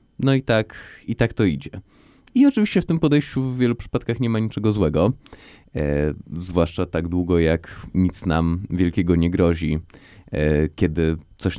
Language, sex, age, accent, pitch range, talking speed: Polish, male, 20-39, native, 80-105 Hz, 165 wpm